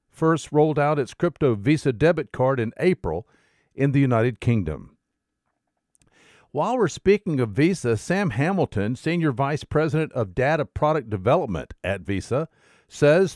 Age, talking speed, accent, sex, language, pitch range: 50-69, 140 wpm, American, male, English, 120-165 Hz